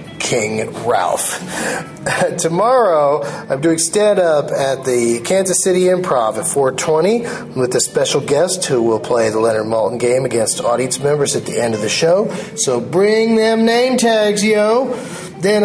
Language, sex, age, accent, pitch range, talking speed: English, male, 30-49, American, 130-195 Hz, 160 wpm